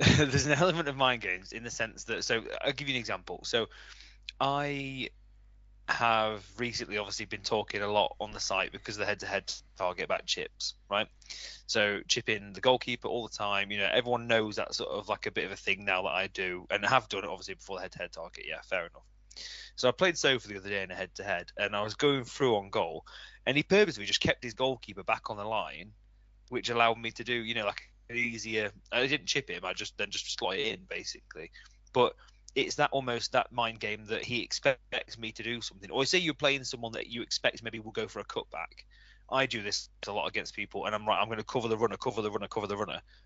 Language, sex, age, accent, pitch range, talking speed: English, male, 20-39, British, 105-130 Hz, 235 wpm